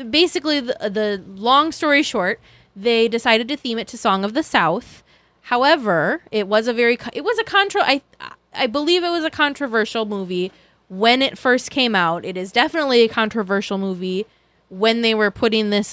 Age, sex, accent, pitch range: 20-39, female, American, 195-260 Hz